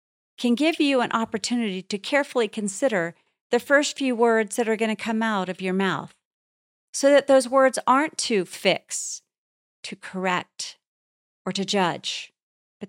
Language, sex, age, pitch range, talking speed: English, female, 40-59, 180-245 Hz, 160 wpm